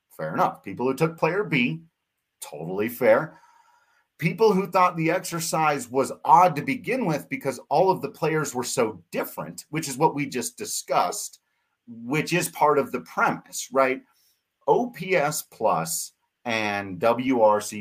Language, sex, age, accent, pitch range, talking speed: English, male, 40-59, American, 115-165 Hz, 150 wpm